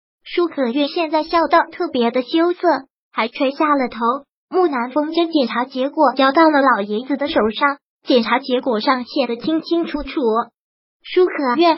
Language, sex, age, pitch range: Chinese, male, 20-39, 260-335 Hz